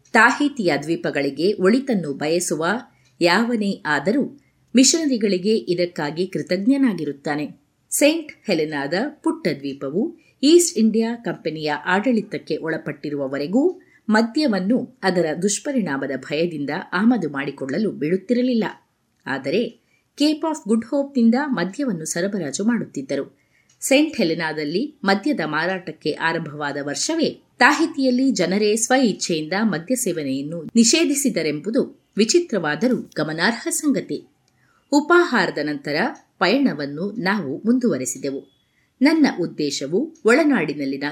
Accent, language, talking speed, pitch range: native, Kannada, 80 wpm, 155-255 Hz